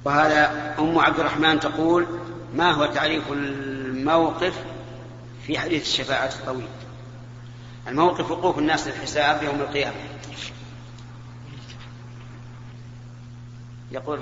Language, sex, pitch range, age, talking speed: Arabic, male, 120-145 Hz, 40-59, 85 wpm